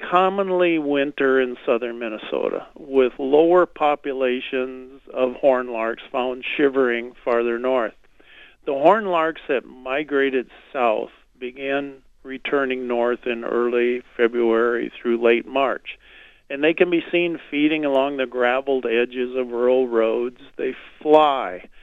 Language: English